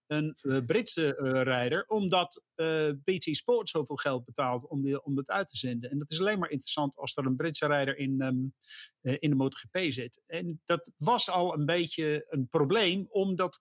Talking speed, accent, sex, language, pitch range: 205 wpm, Dutch, male, English, 140-180 Hz